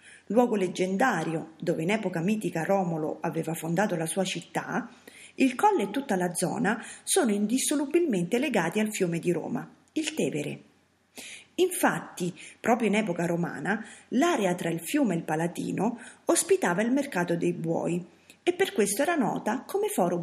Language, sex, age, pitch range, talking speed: Italian, female, 40-59, 175-270 Hz, 150 wpm